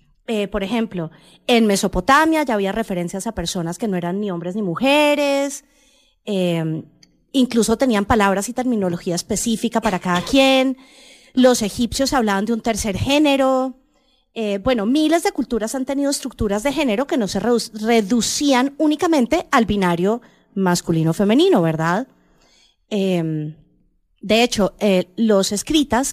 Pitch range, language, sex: 200-270 Hz, English, female